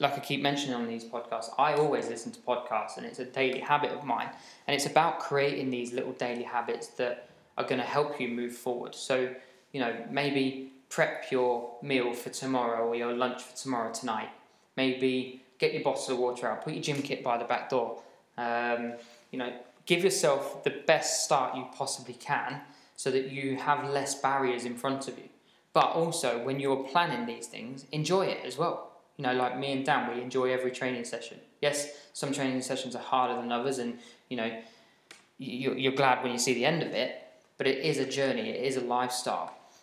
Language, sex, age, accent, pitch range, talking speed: English, male, 20-39, British, 120-135 Hz, 200 wpm